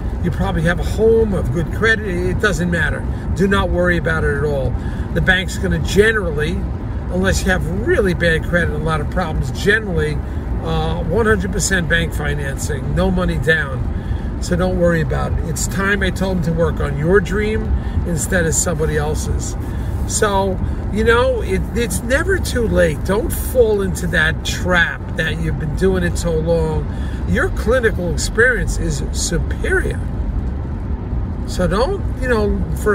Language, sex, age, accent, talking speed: English, male, 50-69, American, 160 wpm